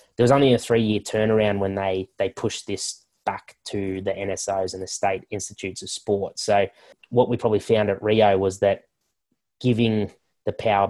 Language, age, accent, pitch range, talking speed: English, 20-39, Australian, 95-110 Hz, 185 wpm